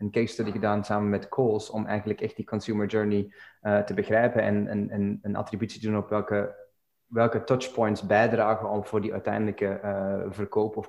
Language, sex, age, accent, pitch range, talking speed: Dutch, male, 20-39, Dutch, 100-115 Hz, 185 wpm